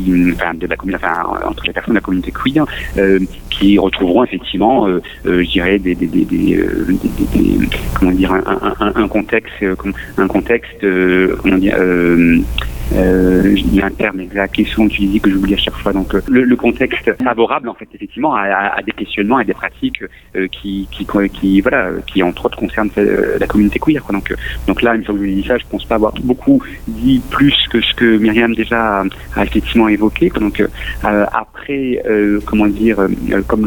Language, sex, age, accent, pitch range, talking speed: French, male, 40-59, French, 95-110 Hz, 210 wpm